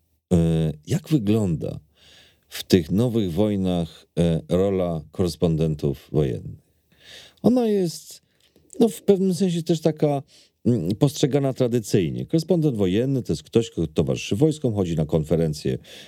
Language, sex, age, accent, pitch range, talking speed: Polish, male, 40-59, native, 85-120 Hz, 110 wpm